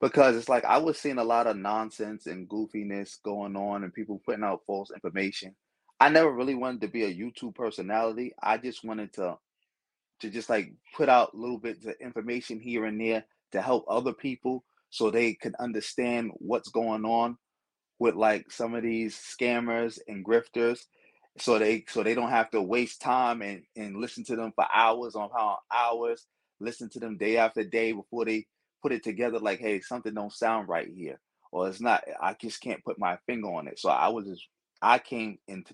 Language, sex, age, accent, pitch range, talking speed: English, male, 20-39, American, 100-120 Hz, 200 wpm